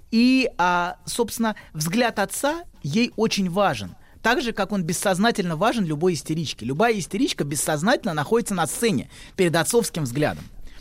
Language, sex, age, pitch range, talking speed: Russian, male, 30-49, 150-215 Hz, 135 wpm